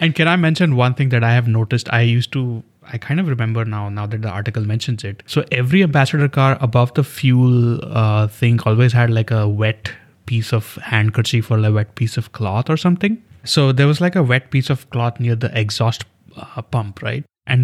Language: English